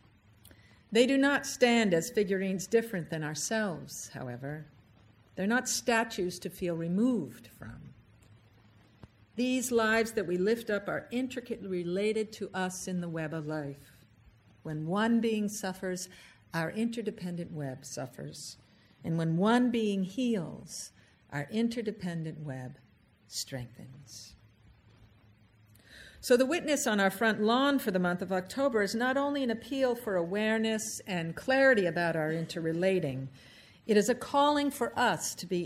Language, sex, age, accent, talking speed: English, female, 50-69, American, 140 wpm